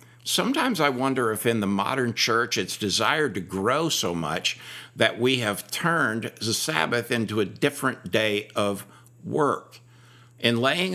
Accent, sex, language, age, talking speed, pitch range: American, male, English, 60-79, 155 wpm, 110-145 Hz